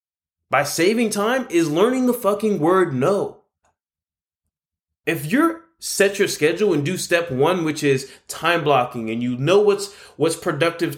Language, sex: English, male